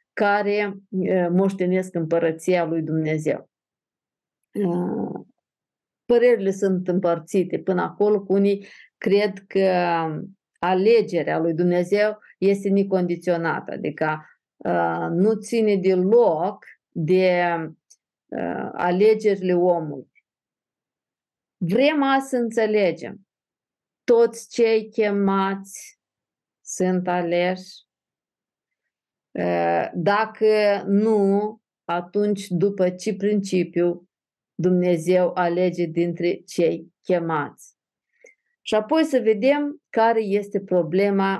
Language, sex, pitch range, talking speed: Romanian, female, 175-210 Hz, 75 wpm